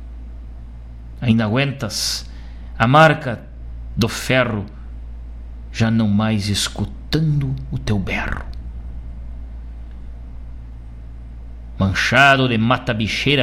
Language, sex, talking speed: Portuguese, male, 75 wpm